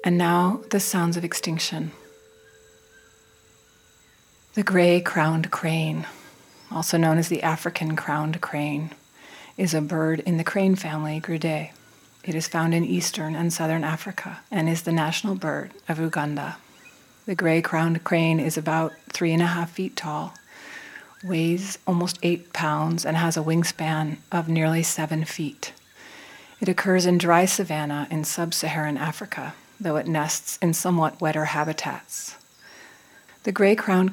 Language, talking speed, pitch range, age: English, 135 wpm, 155-180 Hz, 30-49